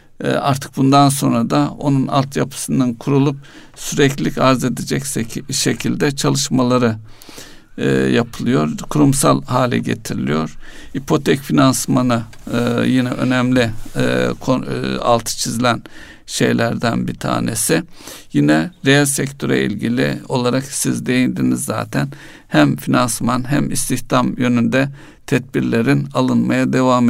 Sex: male